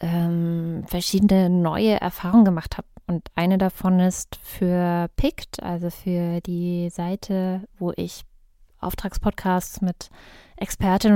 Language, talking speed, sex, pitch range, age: English, 110 wpm, female, 175-195 Hz, 20-39